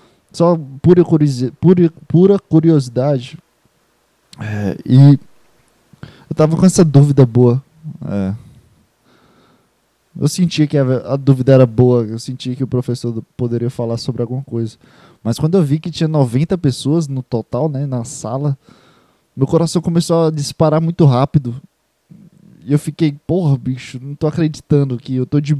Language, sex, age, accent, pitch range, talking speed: Portuguese, male, 20-39, Brazilian, 125-155 Hz, 145 wpm